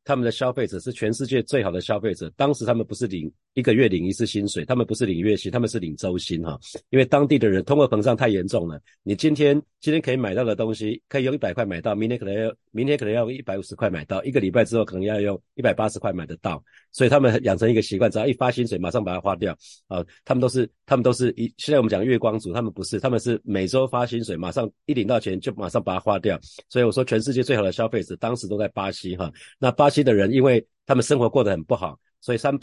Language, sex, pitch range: Chinese, male, 100-130 Hz